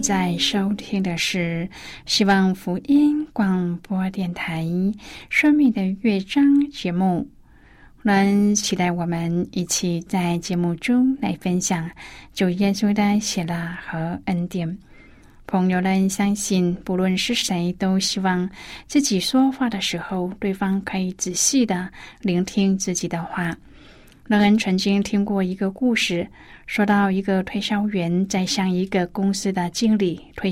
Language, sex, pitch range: Chinese, female, 180-215 Hz